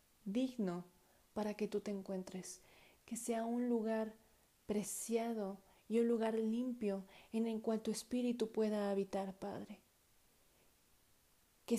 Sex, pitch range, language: female, 205-235 Hz, Spanish